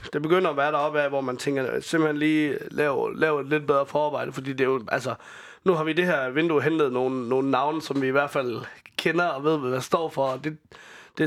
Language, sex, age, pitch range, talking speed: Danish, male, 30-49, 125-155 Hz, 250 wpm